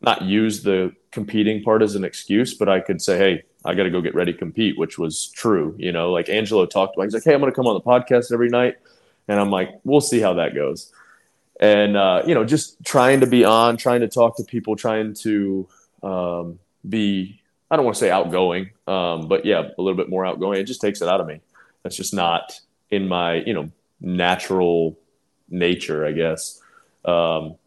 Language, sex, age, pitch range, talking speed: English, male, 20-39, 85-100 Hz, 220 wpm